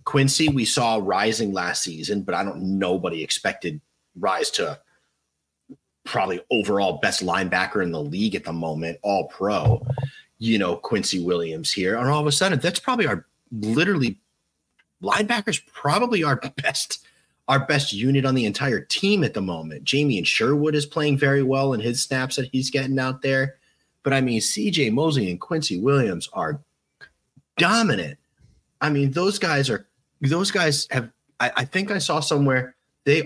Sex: male